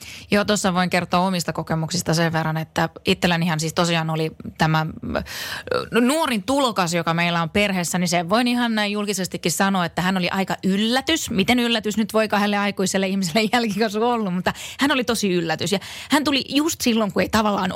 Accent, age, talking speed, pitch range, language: native, 20-39, 180 wpm, 160-215 Hz, Finnish